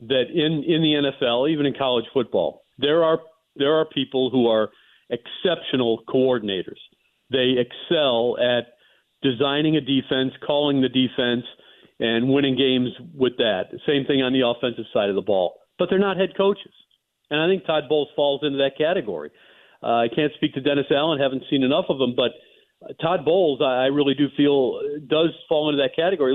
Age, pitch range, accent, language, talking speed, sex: 50-69, 130-155 Hz, American, English, 180 wpm, male